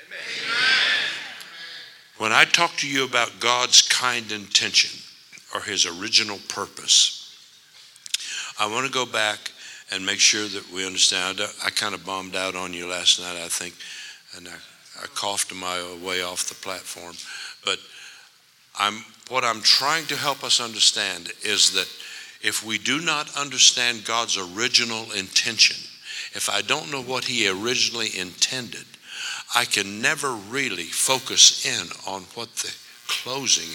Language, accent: English, American